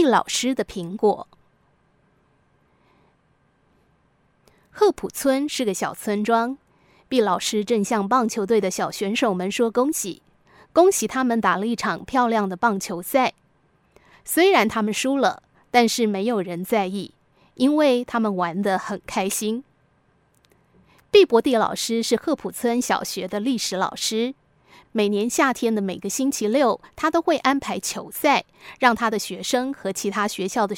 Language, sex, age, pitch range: Chinese, female, 20-39, 200-255 Hz